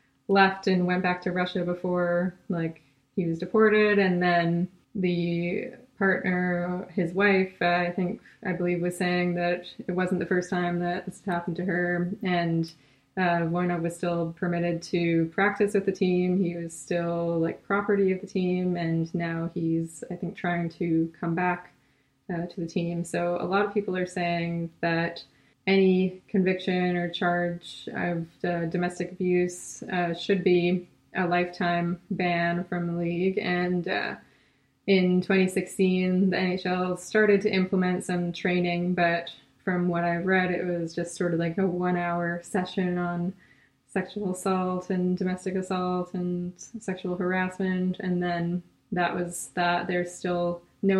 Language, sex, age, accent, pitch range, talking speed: English, female, 20-39, American, 175-185 Hz, 160 wpm